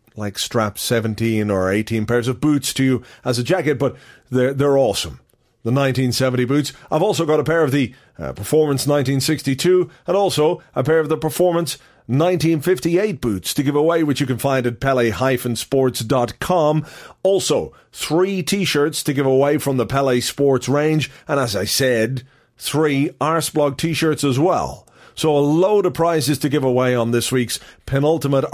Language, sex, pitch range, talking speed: English, male, 130-160 Hz, 170 wpm